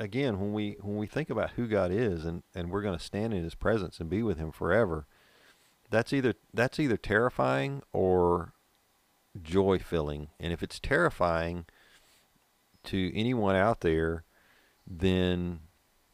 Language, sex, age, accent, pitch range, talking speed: English, male, 50-69, American, 85-110 Hz, 150 wpm